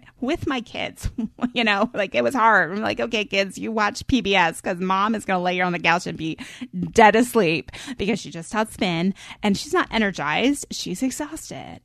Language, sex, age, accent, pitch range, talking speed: English, female, 30-49, American, 170-245 Hz, 210 wpm